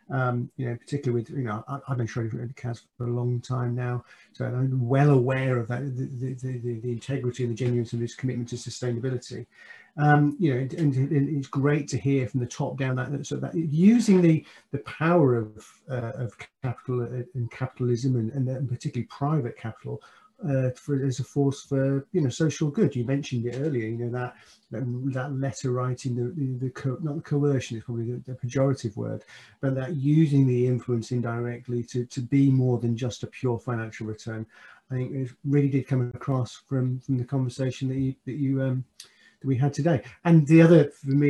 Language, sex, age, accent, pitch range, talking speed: English, male, 40-59, British, 120-140 Hz, 210 wpm